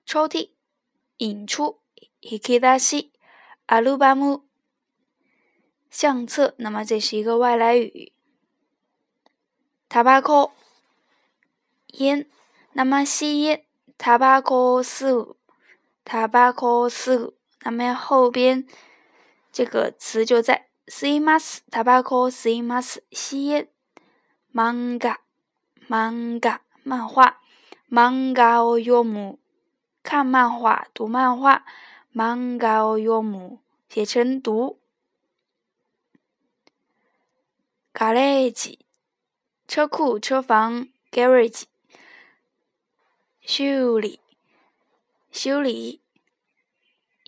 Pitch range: 235-270 Hz